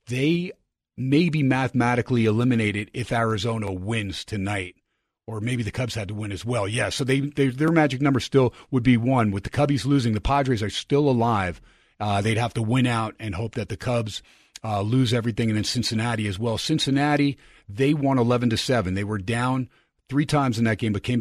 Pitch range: 110-130 Hz